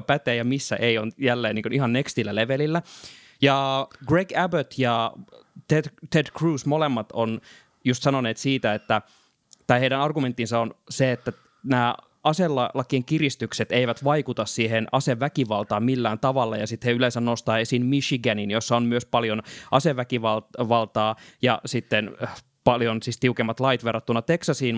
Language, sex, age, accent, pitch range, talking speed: Finnish, male, 20-39, native, 120-150 Hz, 140 wpm